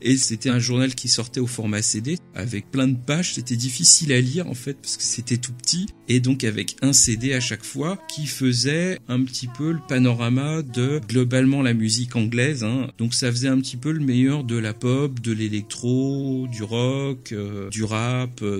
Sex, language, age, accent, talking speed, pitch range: male, French, 50-69, French, 205 wpm, 120-140 Hz